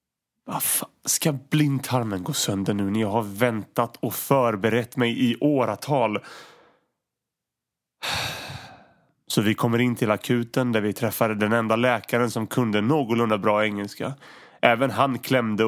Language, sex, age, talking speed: Swedish, male, 30-49, 135 wpm